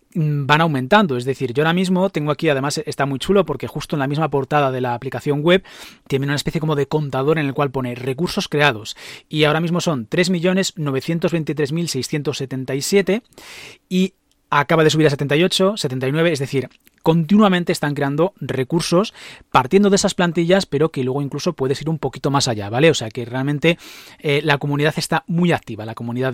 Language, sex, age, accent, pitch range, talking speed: Spanish, male, 30-49, Spanish, 135-170 Hz, 180 wpm